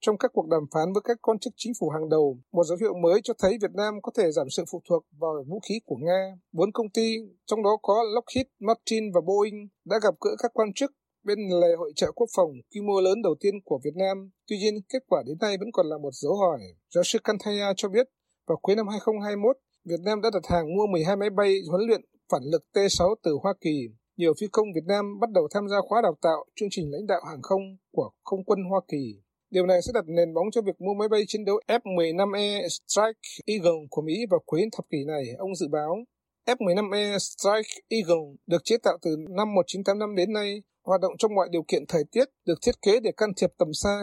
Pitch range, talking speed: 175-220 Hz, 240 wpm